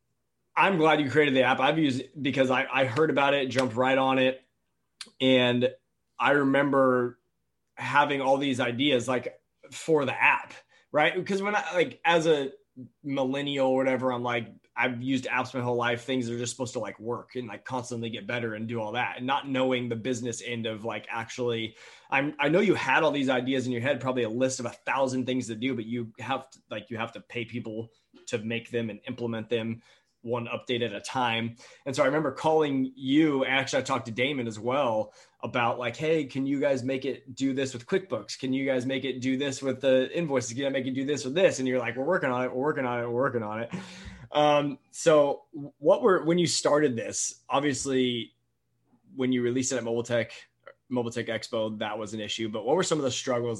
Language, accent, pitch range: English, American, 120-135 Hz